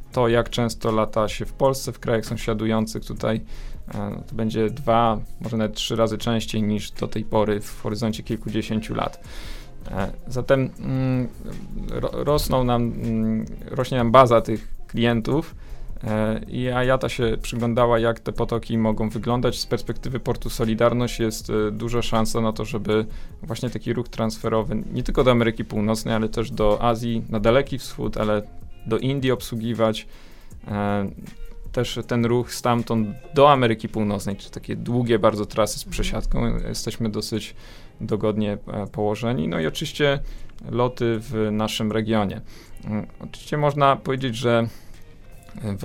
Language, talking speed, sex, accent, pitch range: Polish, 145 wpm, male, native, 110-120 Hz